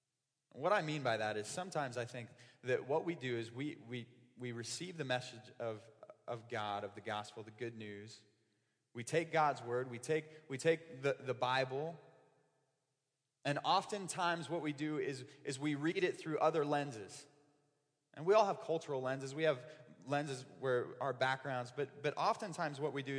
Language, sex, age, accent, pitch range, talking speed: English, male, 30-49, American, 130-190 Hz, 185 wpm